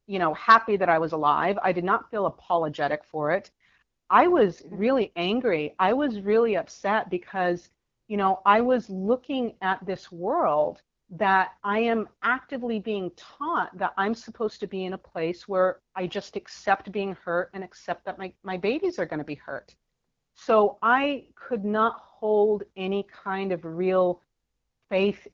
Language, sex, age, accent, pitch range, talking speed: English, female, 40-59, American, 170-205 Hz, 170 wpm